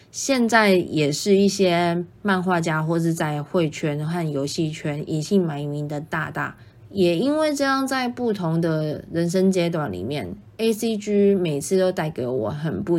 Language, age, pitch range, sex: Chinese, 20-39, 155-195 Hz, female